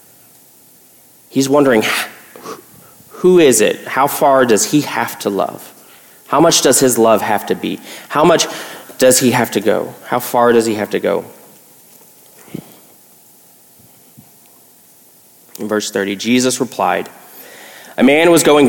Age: 30-49